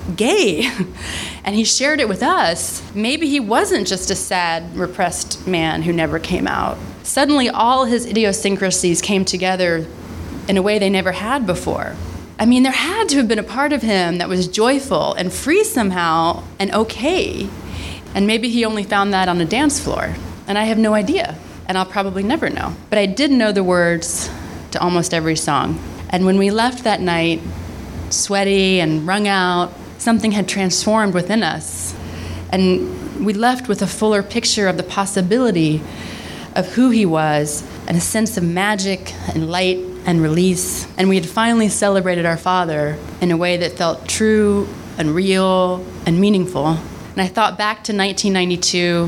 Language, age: English, 30-49